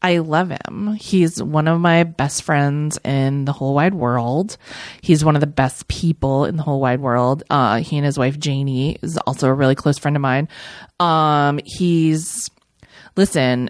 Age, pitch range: 30-49, 140-165 Hz